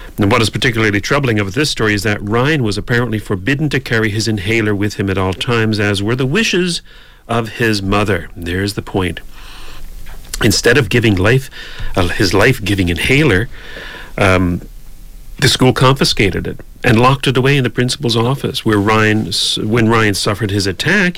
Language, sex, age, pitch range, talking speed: English, male, 40-59, 95-125 Hz, 175 wpm